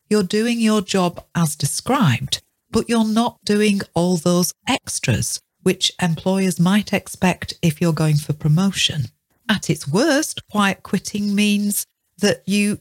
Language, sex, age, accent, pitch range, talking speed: English, female, 40-59, British, 155-215 Hz, 140 wpm